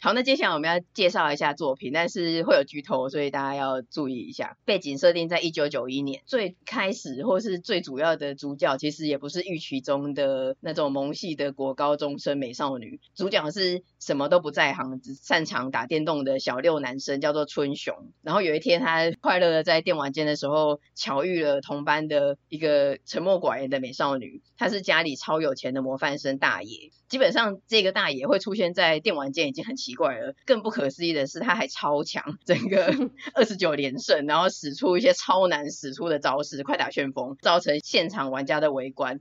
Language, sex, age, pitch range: Chinese, female, 20-39, 145-185 Hz